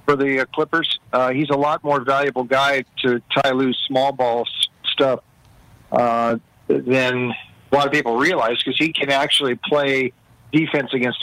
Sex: male